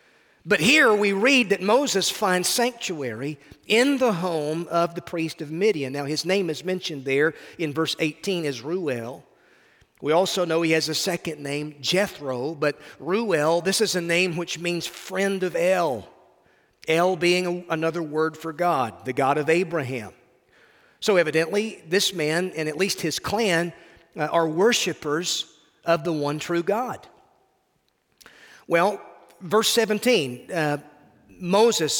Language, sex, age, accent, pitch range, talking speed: English, male, 40-59, American, 155-195 Hz, 150 wpm